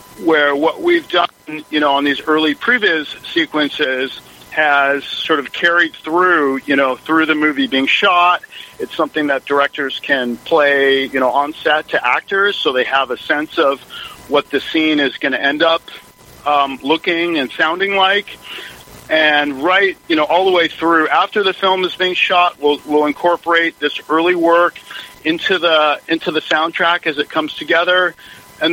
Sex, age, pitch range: male, 50-69, 145-175 Hz